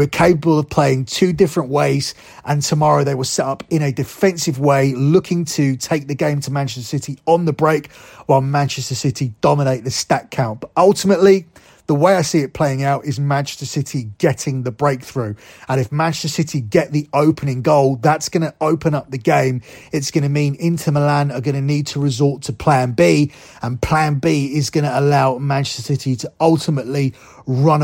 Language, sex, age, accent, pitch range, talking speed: English, male, 30-49, British, 135-160 Hz, 200 wpm